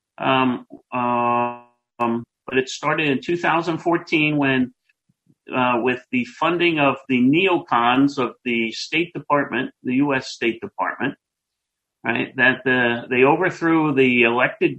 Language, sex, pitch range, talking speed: English, male, 145-220 Hz, 125 wpm